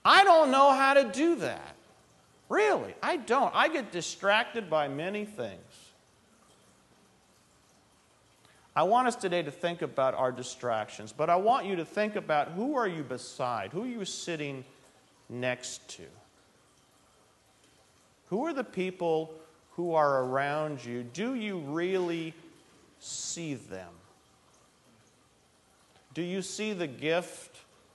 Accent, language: American, English